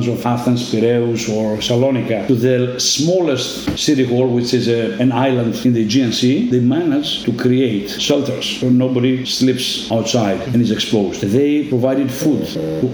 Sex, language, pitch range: male, English, 115-140 Hz